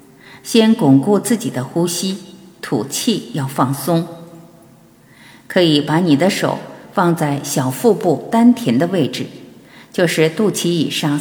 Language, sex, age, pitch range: Chinese, female, 50-69, 140-200 Hz